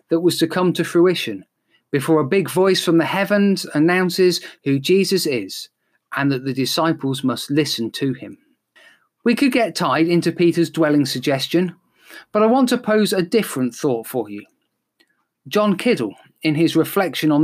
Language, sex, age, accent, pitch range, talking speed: English, male, 40-59, British, 155-190 Hz, 170 wpm